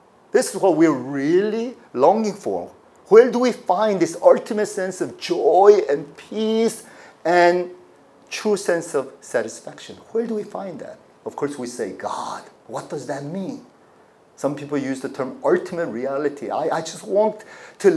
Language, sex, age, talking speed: English, male, 40-59, 165 wpm